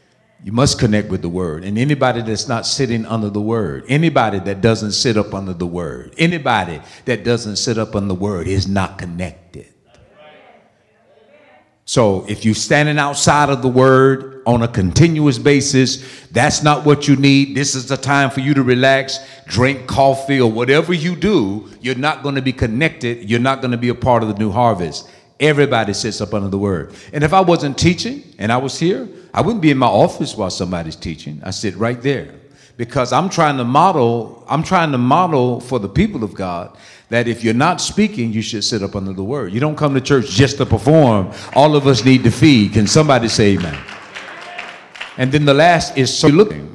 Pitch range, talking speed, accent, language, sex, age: 105-140 Hz, 205 wpm, American, English, male, 50-69